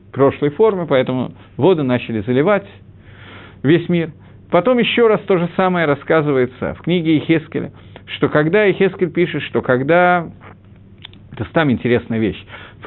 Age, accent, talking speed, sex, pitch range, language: 50-69, native, 135 wpm, male, 110-180 Hz, Russian